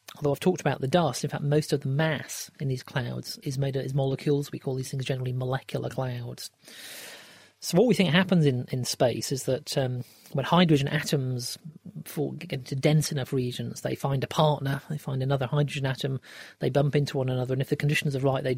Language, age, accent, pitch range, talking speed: English, 40-59, British, 130-150 Hz, 215 wpm